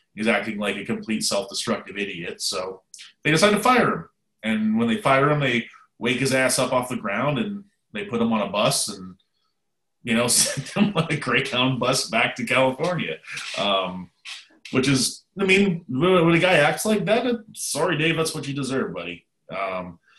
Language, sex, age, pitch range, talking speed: English, male, 30-49, 105-145 Hz, 190 wpm